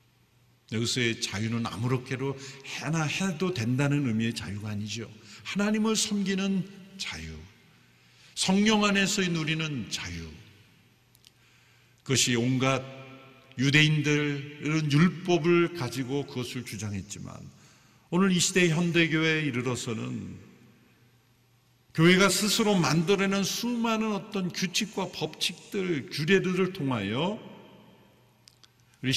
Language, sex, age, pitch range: Korean, male, 50-69, 115-170 Hz